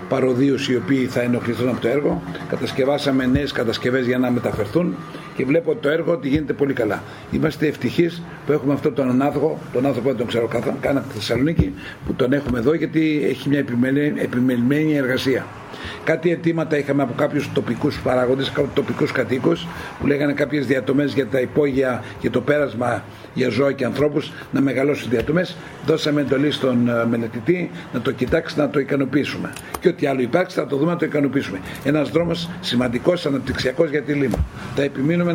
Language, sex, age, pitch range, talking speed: Greek, male, 60-79, 130-150 Hz, 175 wpm